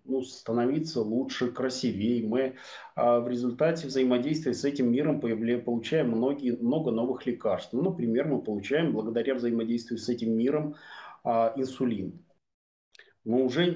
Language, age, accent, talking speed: Russian, 30-49, native, 115 wpm